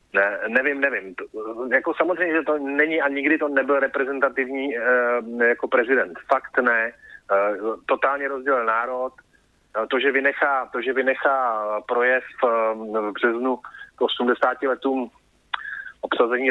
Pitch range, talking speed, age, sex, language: 120-145 Hz, 135 wpm, 30-49, male, Slovak